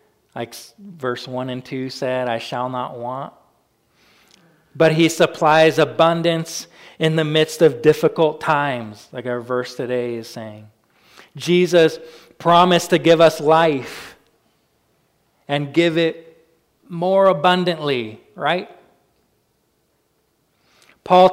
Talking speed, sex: 110 wpm, male